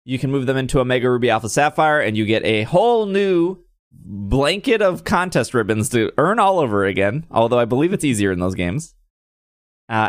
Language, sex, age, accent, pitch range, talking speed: English, male, 20-39, American, 105-145 Hz, 195 wpm